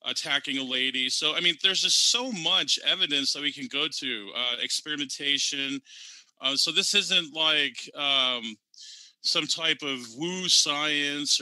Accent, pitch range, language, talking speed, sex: American, 135-165 Hz, English, 150 wpm, male